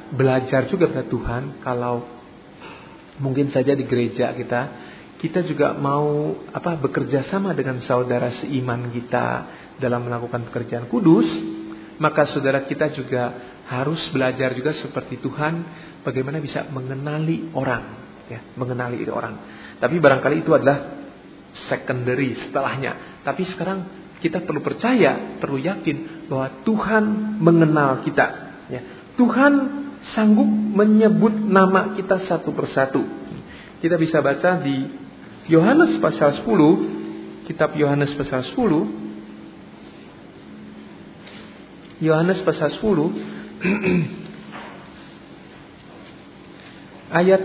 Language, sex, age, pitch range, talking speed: English, male, 40-59, 130-185 Hz, 100 wpm